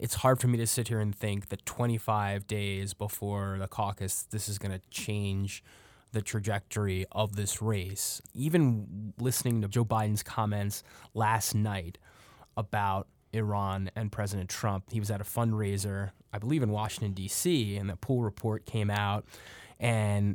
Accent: American